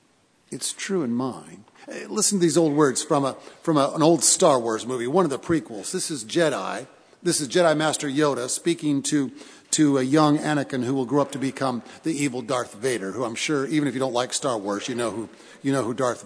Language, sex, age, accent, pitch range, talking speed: English, male, 50-69, American, 125-155 Hz, 235 wpm